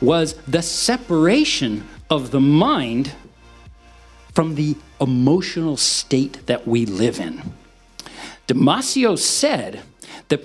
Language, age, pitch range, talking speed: English, 50-69, 120-170 Hz, 100 wpm